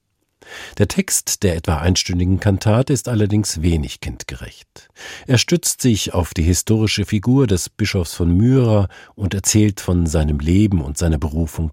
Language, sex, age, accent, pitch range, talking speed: German, male, 50-69, German, 85-115 Hz, 150 wpm